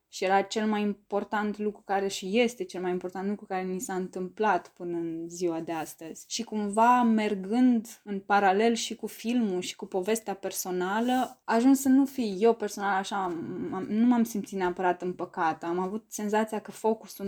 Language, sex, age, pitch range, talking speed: Romanian, female, 20-39, 185-225 Hz, 185 wpm